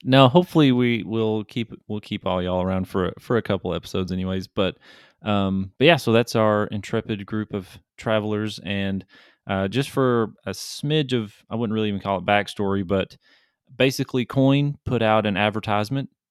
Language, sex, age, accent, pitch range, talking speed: English, male, 30-49, American, 95-115 Hz, 175 wpm